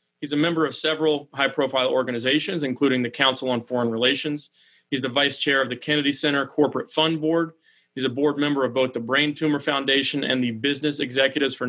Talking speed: 200 wpm